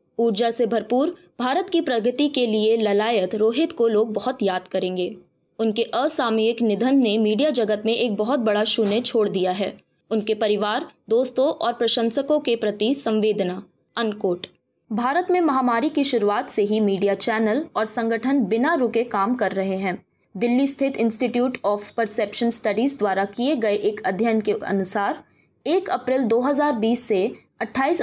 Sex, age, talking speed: female, 20-39, 75 wpm